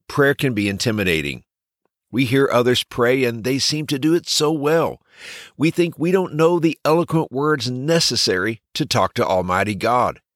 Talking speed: 175 wpm